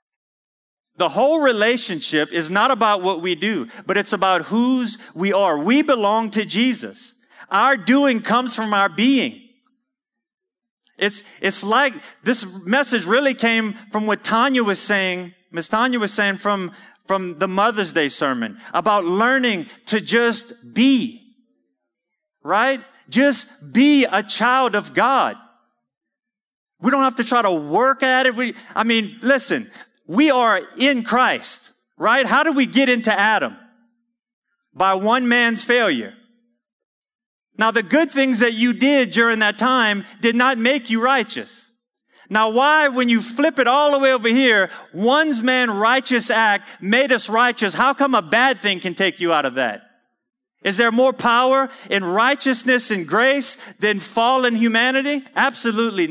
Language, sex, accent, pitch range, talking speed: English, male, American, 210-260 Hz, 150 wpm